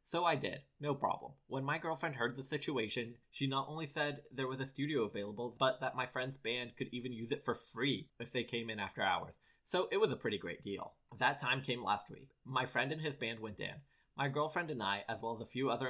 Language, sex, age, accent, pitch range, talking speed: English, male, 20-39, American, 105-135 Hz, 250 wpm